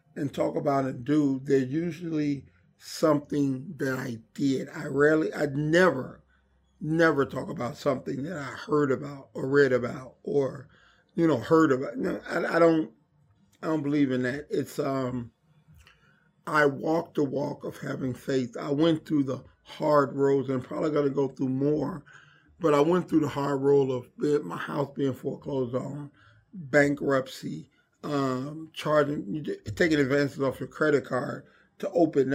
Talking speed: 160 wpm